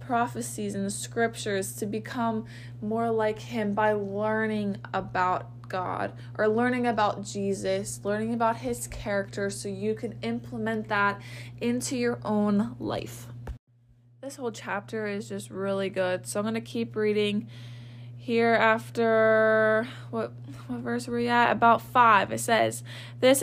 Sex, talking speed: female, 140 wpm